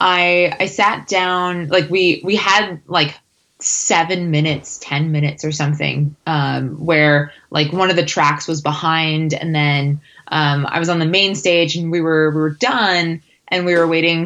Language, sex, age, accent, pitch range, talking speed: English, female, 20-39, American, 145-180 Hz, 180 wpm